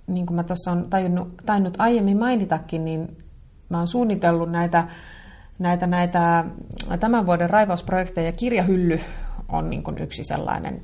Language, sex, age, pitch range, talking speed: Finnish, female, 30-49, 160-190 Hz, 125 wpm